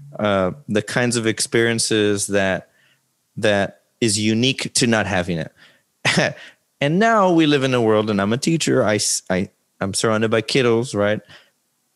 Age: 30-49